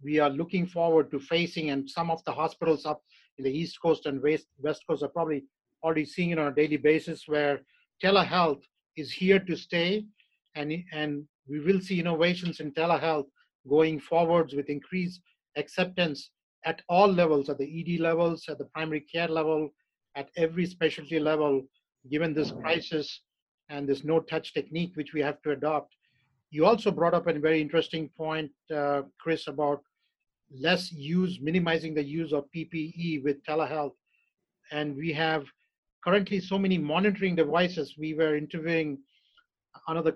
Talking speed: 160 wpm